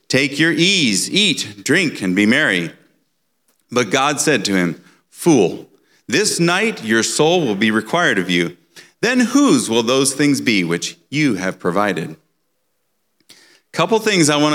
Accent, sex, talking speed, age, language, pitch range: American, male, 150 wpm, 40-59, English, 130-180 Hz